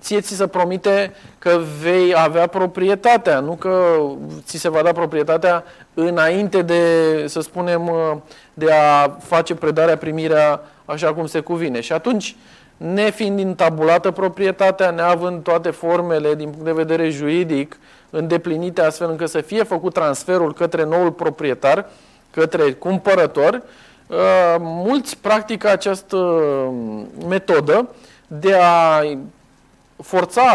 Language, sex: Romanian, male